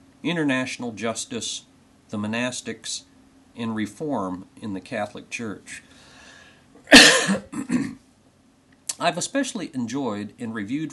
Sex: male